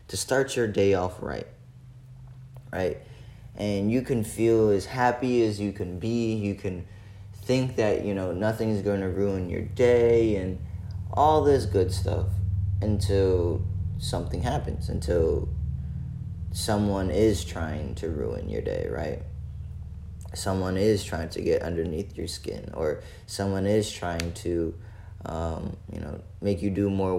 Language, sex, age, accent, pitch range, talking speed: English, male, 20-39, American, 90-105 Hz, 150 wpm